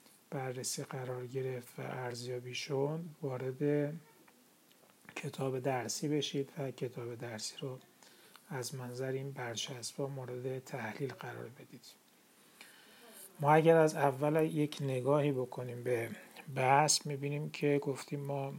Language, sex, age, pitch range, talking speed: Persian, male, 40-59, 125-145 Hz, 115 wpm